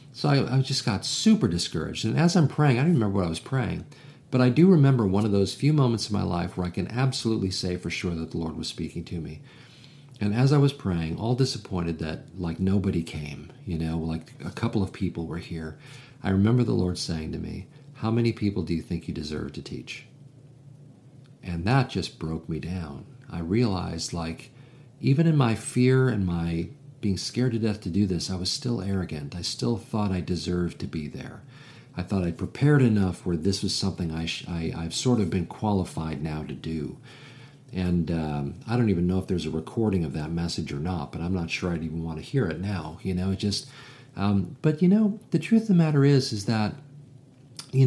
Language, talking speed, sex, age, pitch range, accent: English, 225 wpm, male, 50-69, 85-135 Hz, American